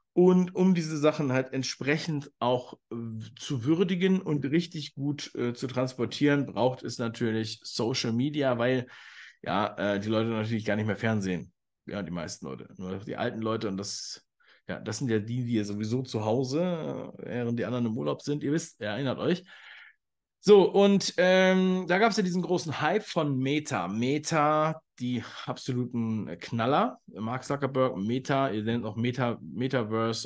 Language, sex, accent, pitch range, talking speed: German, male, German, 115-155 Hz, 165 wpm